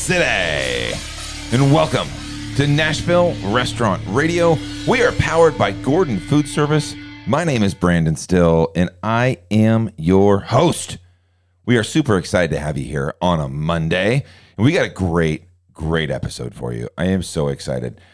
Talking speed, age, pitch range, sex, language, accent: 160 wpm, 40-59, 80-110 Hz, male, English, American